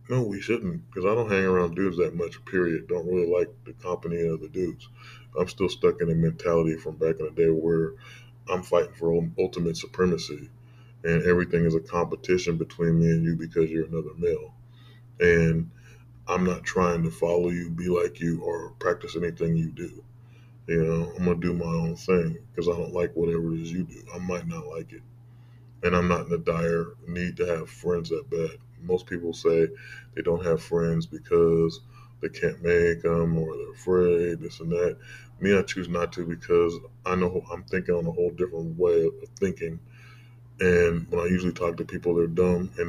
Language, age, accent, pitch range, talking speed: English, 20-39, American, 85-120 Hz, 205 wpm